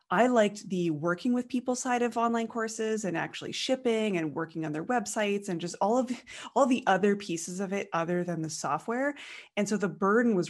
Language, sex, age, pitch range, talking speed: English, female, 20-39, 165-210 Hz, 210 wpm